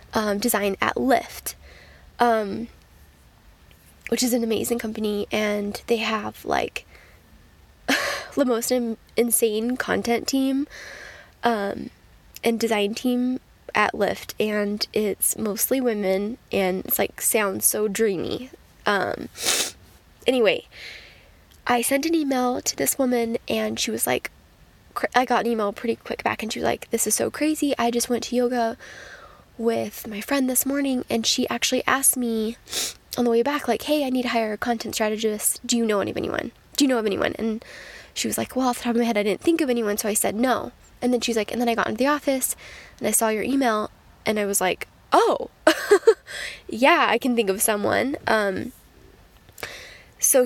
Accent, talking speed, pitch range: American, 180 wpm, 215-255 Hz